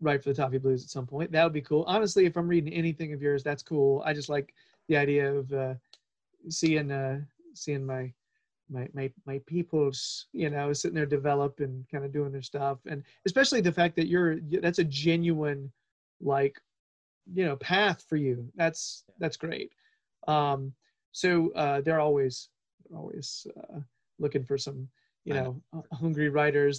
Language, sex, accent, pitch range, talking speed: English, male, American, 140-170 Hz, 175 wpm